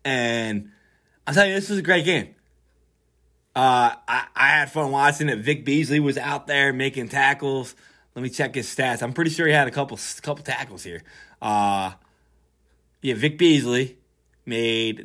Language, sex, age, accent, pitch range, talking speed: English, male, 20-39, American, 95-150 Hz, 170 wpm